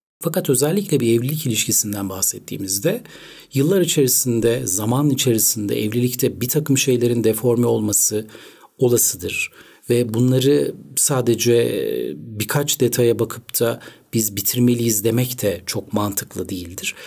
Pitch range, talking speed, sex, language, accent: 110-145 Hz, 110 wpm, male, Turkish, native